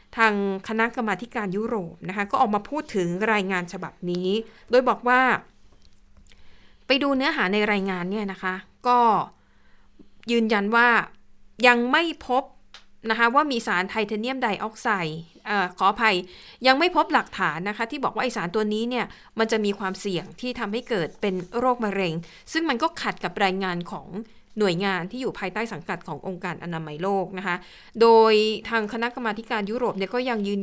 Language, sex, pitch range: Thai, female, 190-235 Hz